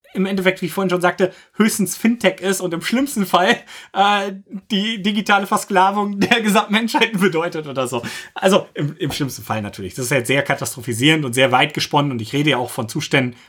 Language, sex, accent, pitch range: German, male, German, 140-185 Hz